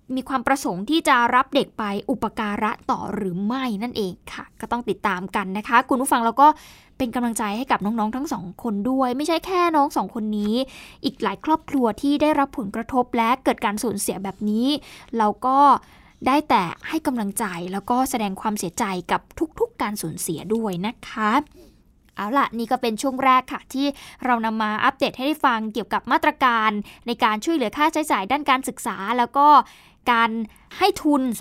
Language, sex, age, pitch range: Thai, female, 20-39, 215-280 Hz